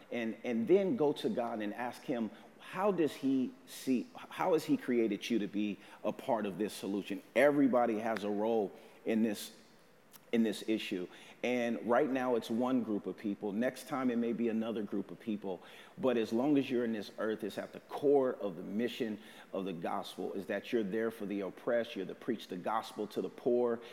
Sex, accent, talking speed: male, American, 210 wpm